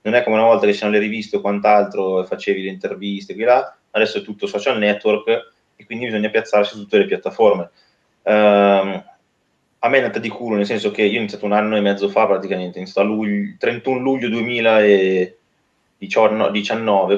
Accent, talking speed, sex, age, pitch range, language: native, 185 wpm, male, 20-39, 100-115 Hz, Italian